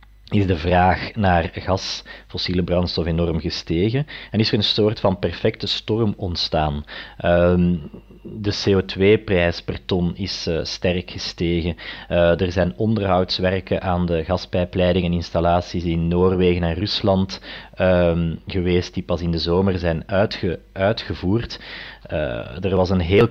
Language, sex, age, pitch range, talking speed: Dutch, male, 30-49, 90-105 Hz, 135 wpm